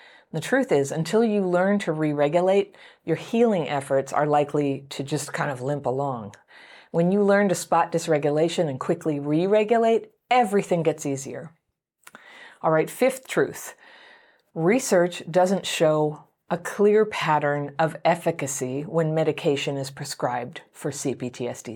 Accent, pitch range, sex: American, 145-185 Hz, female